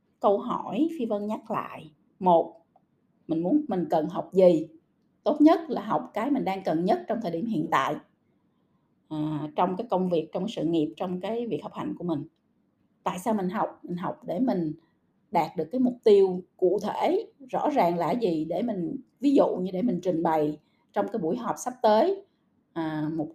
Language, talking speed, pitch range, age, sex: Vietnamese, 200 wpm, 170-245 Hz, 20-39, female